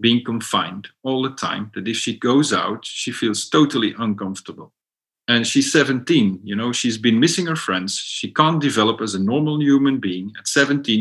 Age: 40-59